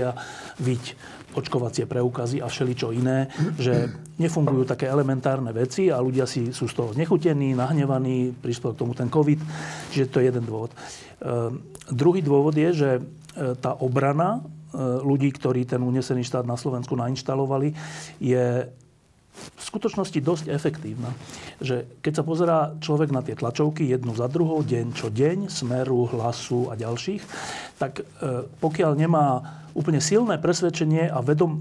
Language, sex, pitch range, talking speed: Slovak, male, 125-160 Hz, 145 wpm